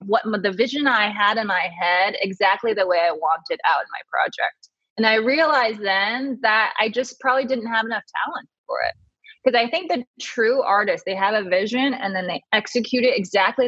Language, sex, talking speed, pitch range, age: English, female, 205 wpm, 195-250 Hz, 20-39